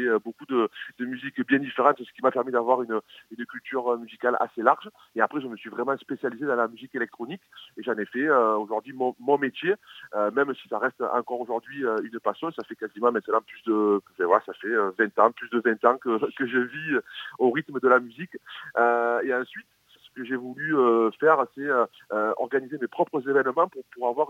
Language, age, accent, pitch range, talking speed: French, 30-49, French, 115-140 Hz, 210 wpm